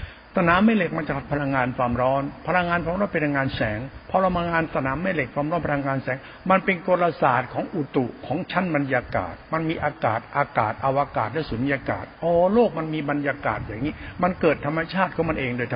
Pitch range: 130-180 Hz